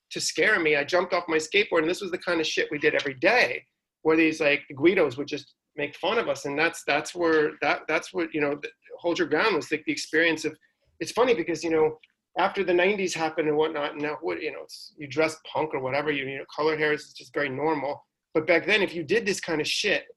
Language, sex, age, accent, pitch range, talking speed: English, male, 40-59, American, 150-185 Hz, 260 wpm